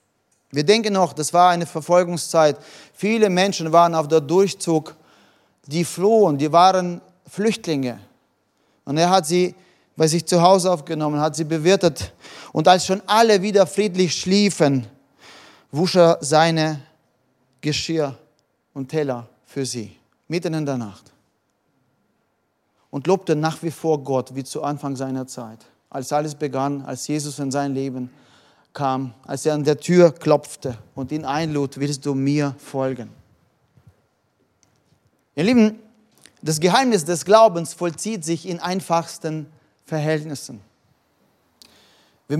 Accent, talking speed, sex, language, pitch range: German, 135 wpm, male, German, 140-180 Hz